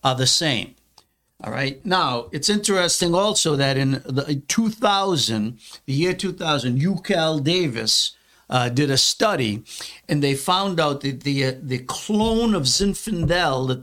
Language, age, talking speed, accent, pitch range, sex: English, 60-79, 150 wpm, American, 130-165 Hz, male